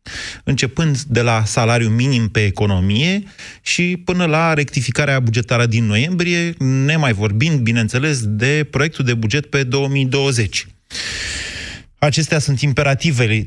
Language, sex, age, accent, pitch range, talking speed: Romanian, male, 30-49, native, 110-150 Hz, 115 wpm